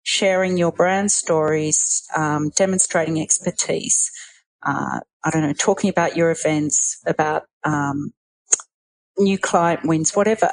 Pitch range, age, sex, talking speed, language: 160-195 Hz, 40-59, female, 120 wpm, English